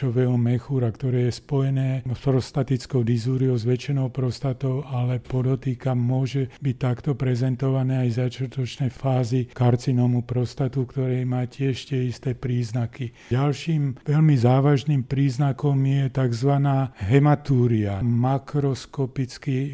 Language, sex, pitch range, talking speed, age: Slovak, male, 130-140 Hz, 95 wpm, 40-59